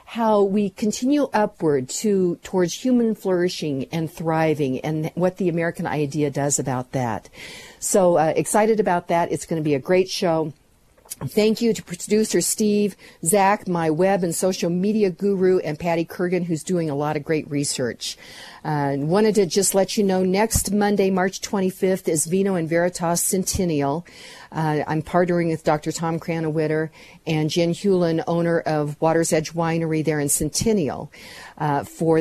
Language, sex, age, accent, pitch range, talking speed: English, female, 50-69, American, 155-190 Hz, 165 wpm